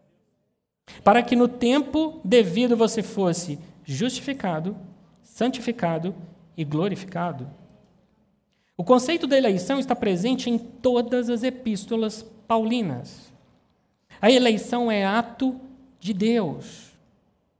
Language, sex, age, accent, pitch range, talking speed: Portuguese, male, 50-69, Brazilian, 170-230 Hz, 95 wpm